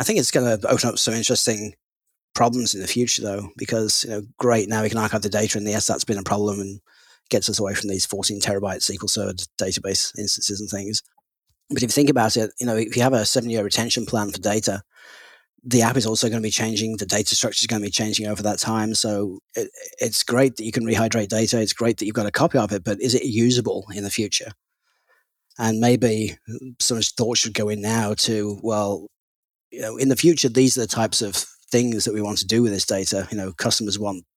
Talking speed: 240 wpm